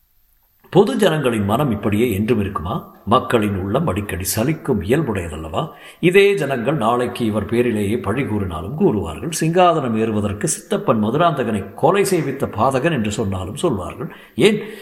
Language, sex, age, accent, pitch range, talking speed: Tamil, male, 60-79, native, 105-165 Hz, 120 wpm